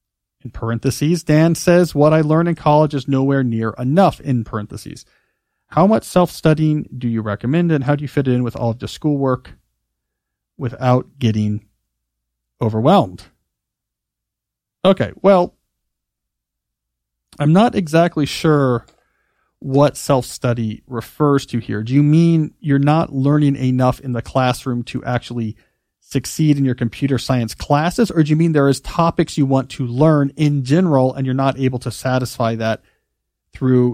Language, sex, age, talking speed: English, male, 40-59, 150 wpm